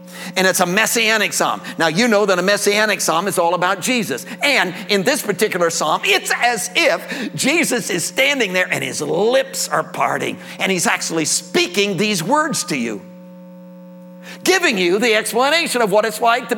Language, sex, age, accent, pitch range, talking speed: English, male, 50-69, American, 180-230 Hz, 180 wpm